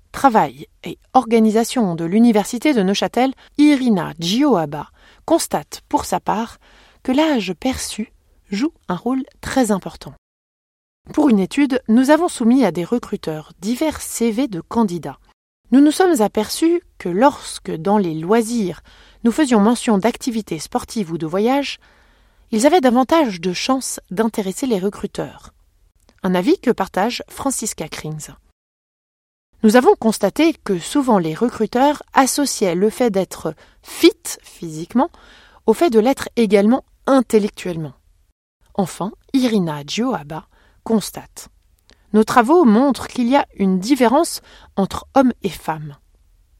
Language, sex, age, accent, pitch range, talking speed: French, female, 30-49, French, 180-260 Hz, 130 wpm